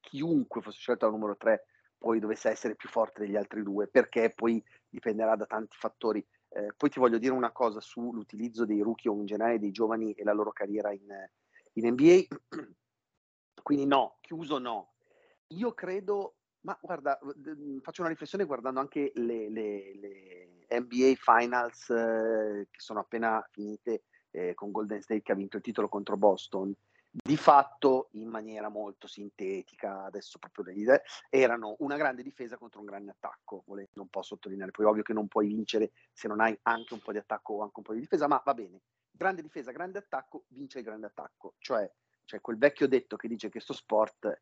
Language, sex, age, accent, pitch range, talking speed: Italian, male, 40-59, native, 105-140 Hz, 190 wpm